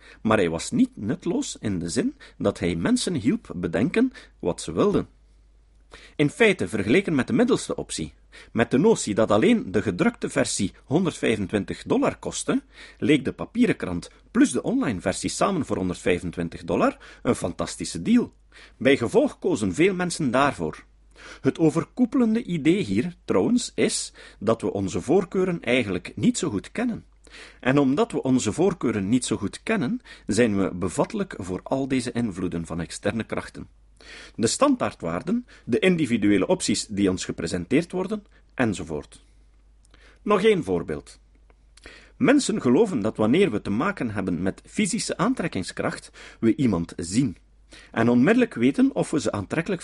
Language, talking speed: Dutch, 145 wpm